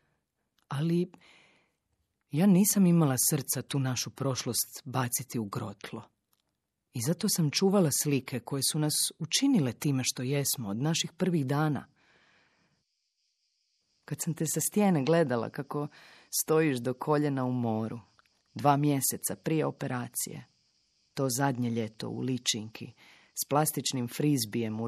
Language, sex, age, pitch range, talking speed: Croatian, female, 40-59, 120-155 Hz, 125 wpm